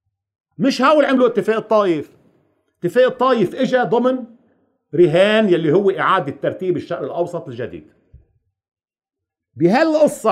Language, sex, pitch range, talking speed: Arabic, male, 120-185 Hz, 105 wpm